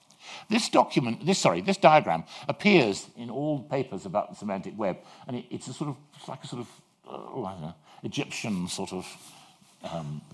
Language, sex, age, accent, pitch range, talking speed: English, male, 50-69, British, 115-175 Hz, 165 wpm